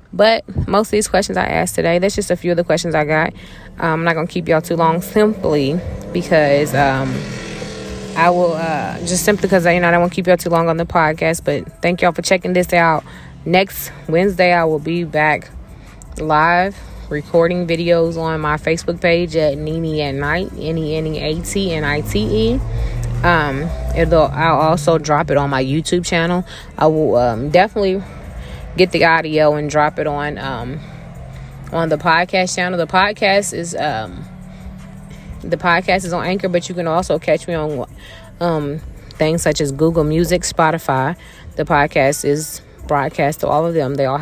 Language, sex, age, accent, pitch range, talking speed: English, female, 20-39, American, 150-175 Hz, 175 wpm